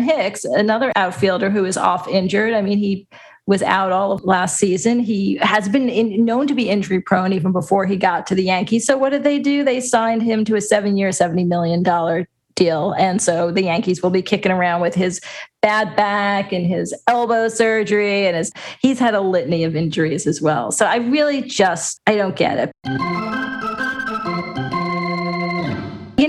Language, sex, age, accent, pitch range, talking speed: English, female, 40-59, American, 180-220 Hz, 185 wpm